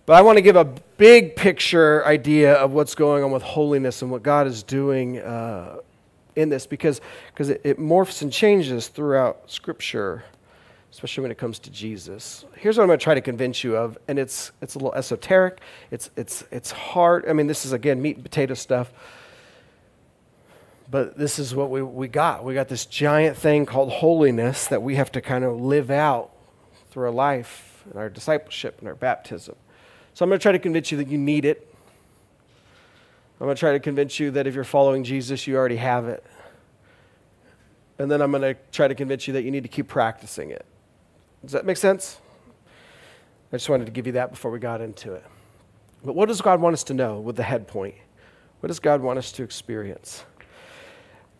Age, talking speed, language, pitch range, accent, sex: 40-59, 205 wpm, English, 125-155 Hz, American, male